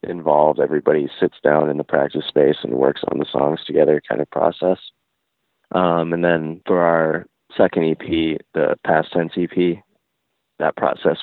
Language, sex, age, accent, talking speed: English, male, 20-39, American, 160 wpm